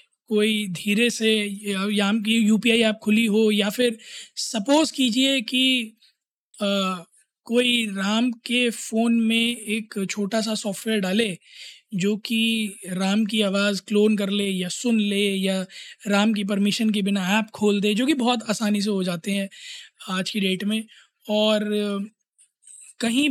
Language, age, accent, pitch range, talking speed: Hindi, 20-39, native, 205-235 Hz, 155 wpm